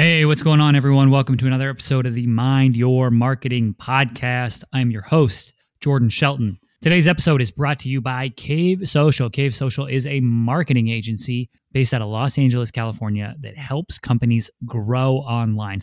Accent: American